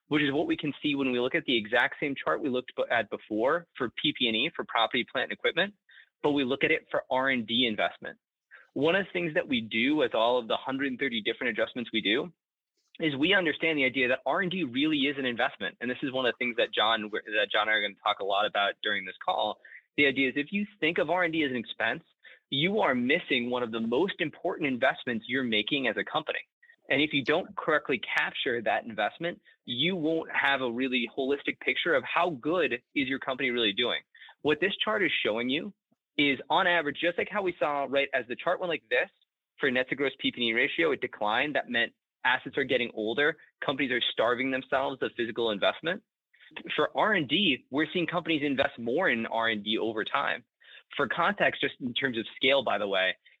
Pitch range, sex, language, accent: 125-165 Hz, male, English, American